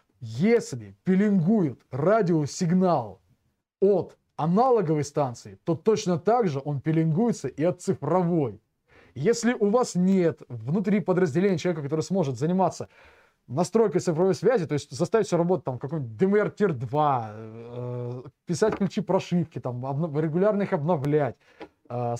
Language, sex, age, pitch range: Russian, male, 20-39, 135-190 Hz